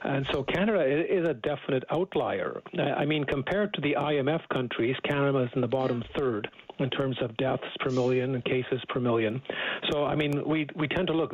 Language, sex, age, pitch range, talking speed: English, male, 50-69, 125-145 Hz, 200 wpm